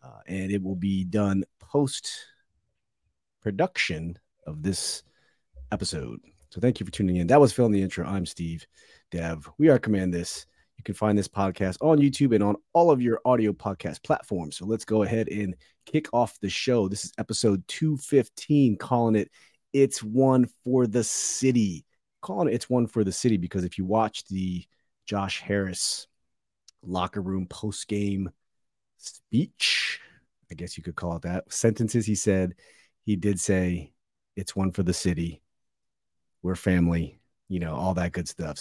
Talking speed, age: 170 wpm, 30-49